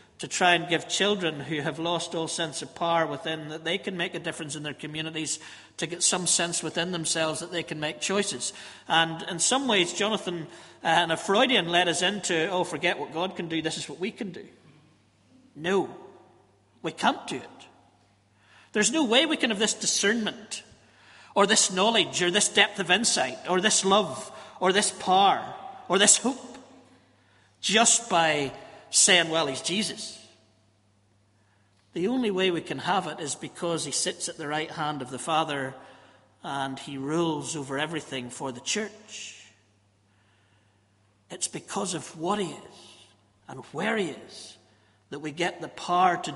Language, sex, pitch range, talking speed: English, male, 135-185 Hz, 175 wpm